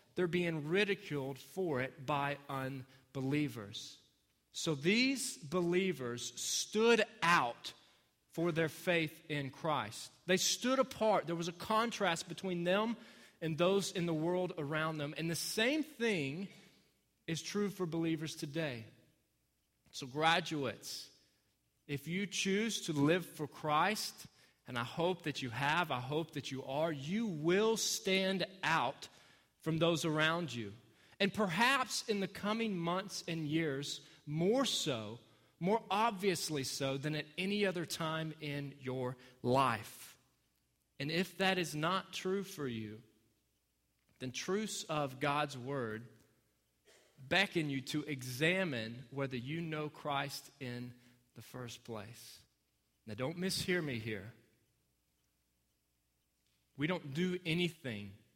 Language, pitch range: English, 125-180 Hz